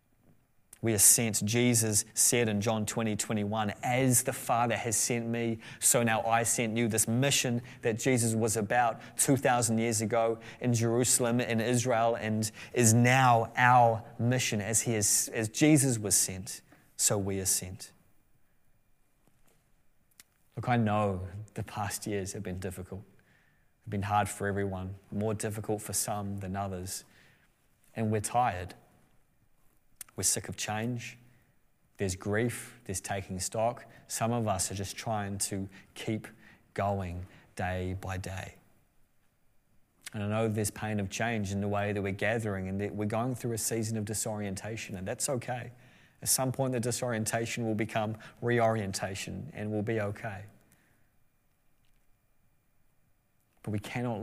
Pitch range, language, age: 100-120 Hz, English, 20-39